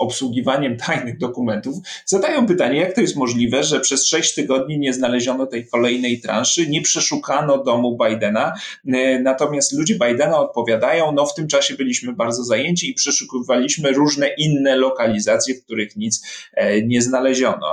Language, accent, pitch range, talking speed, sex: Polish, native, 120-155 Hz, 145 wpm, male